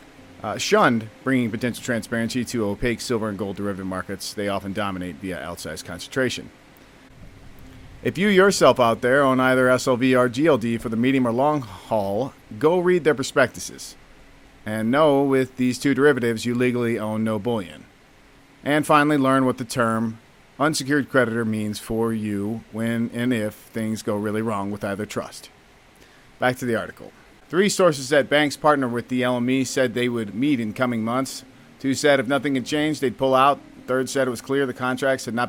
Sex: male